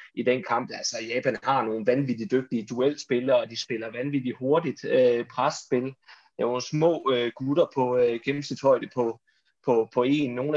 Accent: native